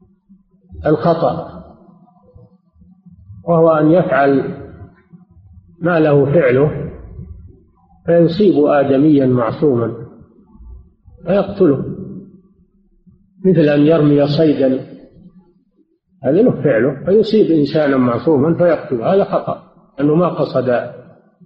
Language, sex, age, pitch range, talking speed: Arabic, male, 50-69, 130-180 Hz, 75 wpm